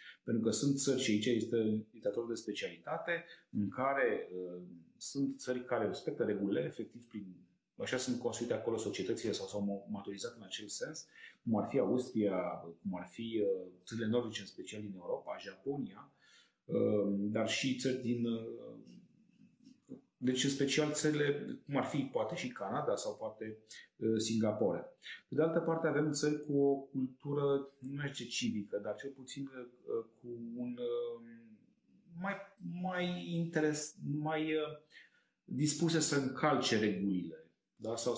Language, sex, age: Romanian, male, 30-49